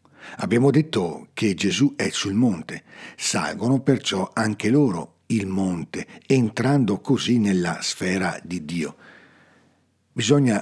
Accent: native